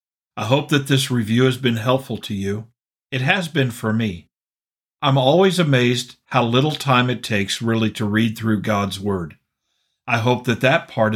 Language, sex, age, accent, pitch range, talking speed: English, male, 50-69, American, 105-130 Hz, 185 wpm